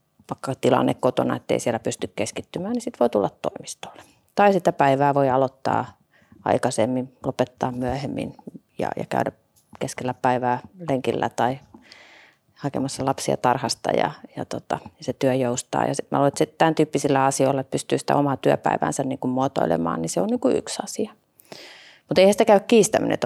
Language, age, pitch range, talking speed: Finnish, 30-49, 120-140 Hz, 165 wpm